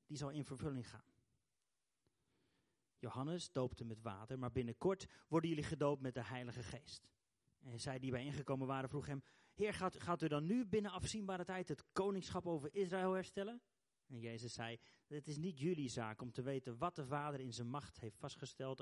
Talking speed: 190 wpm